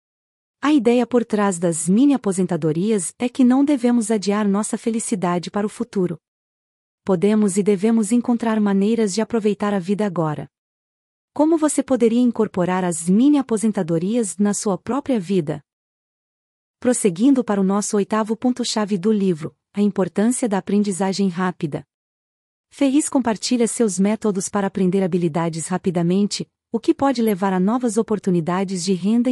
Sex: female